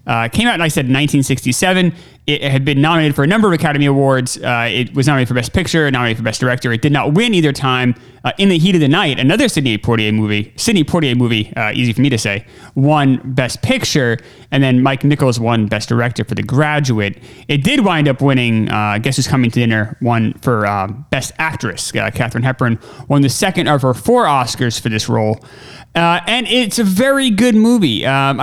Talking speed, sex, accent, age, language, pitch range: 225 wpm, male, American, 30-49, English, 120-160 Hz